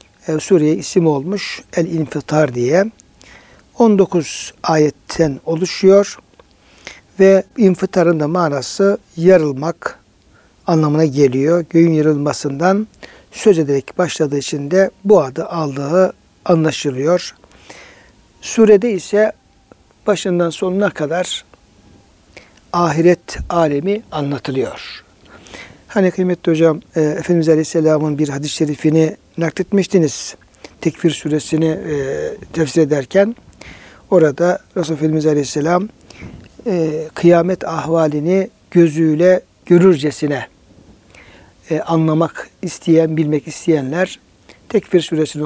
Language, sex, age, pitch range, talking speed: Turkish, male, 60-79, 150-185 Hz, 85 wpm